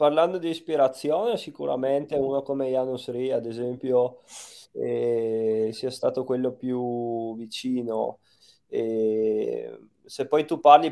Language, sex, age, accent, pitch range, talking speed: Italian, male, 20-39, native, 115-140 Hz, 115 wpm